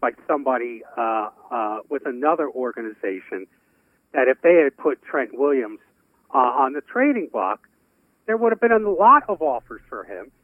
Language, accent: English, American